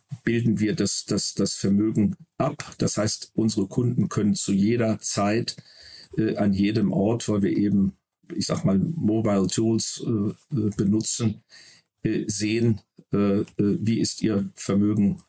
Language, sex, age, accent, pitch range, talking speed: German, male, 50-69, German, 100-120 Hz, 140 wpm